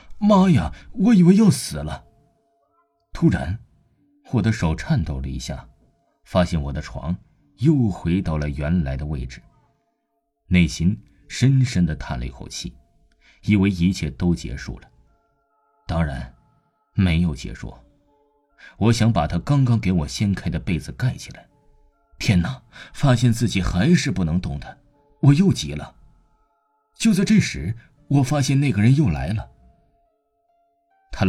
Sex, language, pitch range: male, Chinese, 85-145 Hz